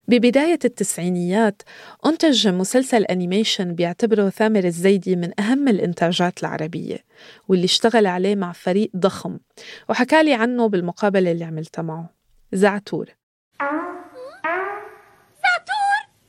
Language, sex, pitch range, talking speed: Arabic, female, 185-240 Hz, 95 wpm